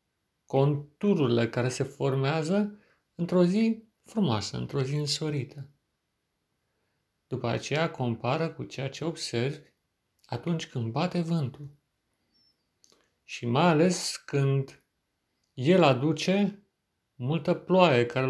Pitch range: 125-165 Hz